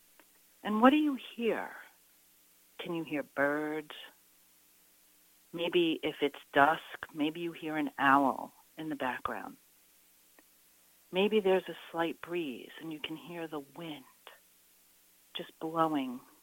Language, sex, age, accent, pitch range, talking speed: English, female, 50-69, American, 135-215 Hz, 125 wpm